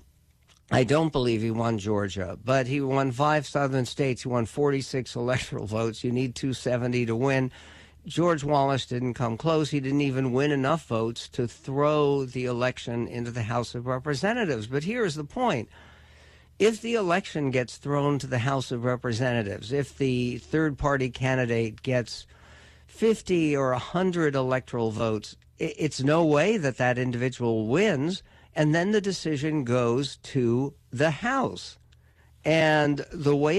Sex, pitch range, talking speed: male, 120-150 Hz, 150 wpm